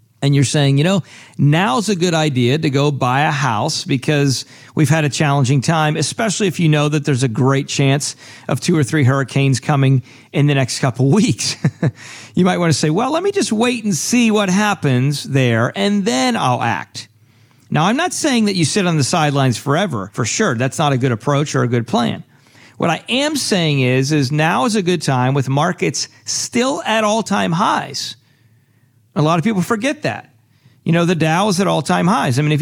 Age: 50-69